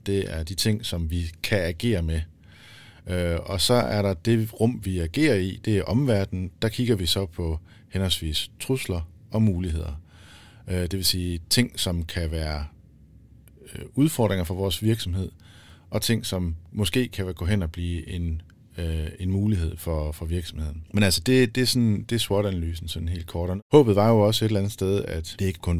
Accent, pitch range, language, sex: native, 85-110 Hz, Danish, male